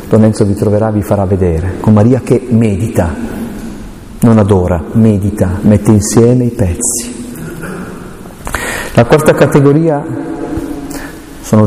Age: 40-59